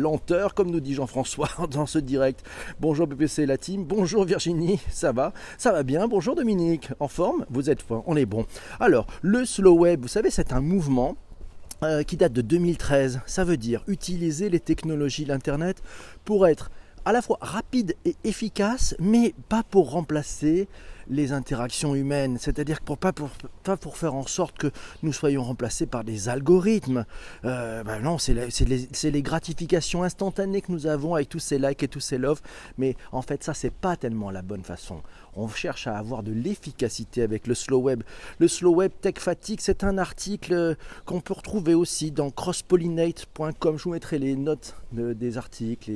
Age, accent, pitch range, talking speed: 40-59, French, 125-175 Hz, 190 wpm